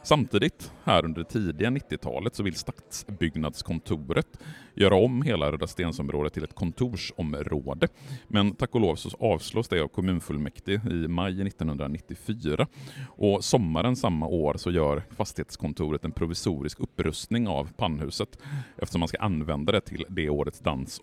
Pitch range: 80-110 Hz